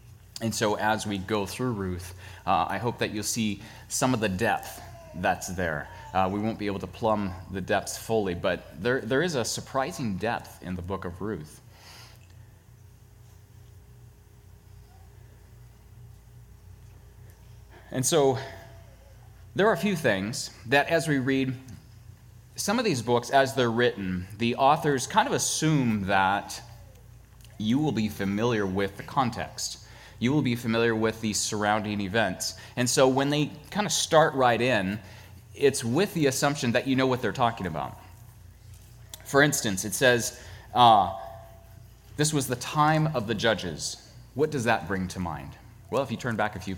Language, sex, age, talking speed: English, male, 30-49, 160 wpm